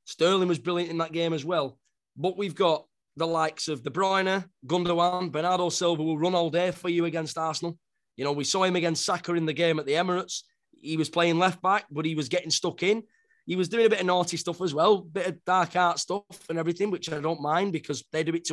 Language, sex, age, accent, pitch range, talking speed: English, male, 20-39, British, 155-180 Hz, 255 wpm